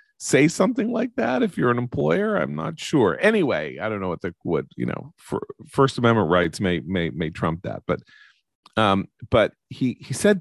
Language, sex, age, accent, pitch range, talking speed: English, male, 40-59, American, 85-120 Hz, 200 wpm